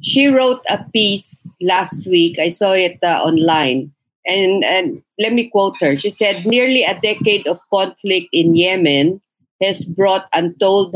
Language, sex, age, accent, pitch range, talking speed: English, female, 50-69, Filipino, 160-195 Hz, 160 wpm